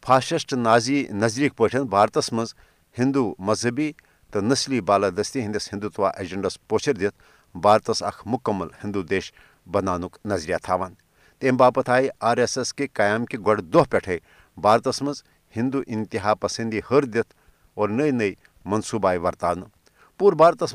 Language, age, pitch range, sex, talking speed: Urdu, 50-69, 105-140 Hz, male, 125 wpm